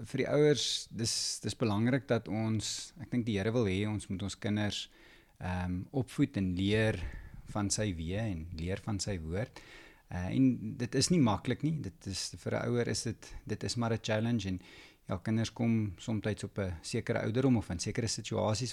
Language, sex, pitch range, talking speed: English, male, 100-125 Hz, 190 wpm